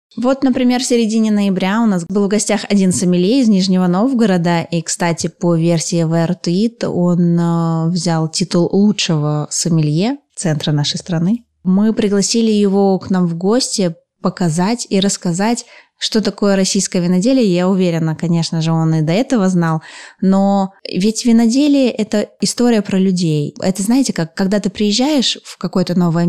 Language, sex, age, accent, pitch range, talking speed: Russian, female, 20-39, native, 170-205 Hz, 155 wpm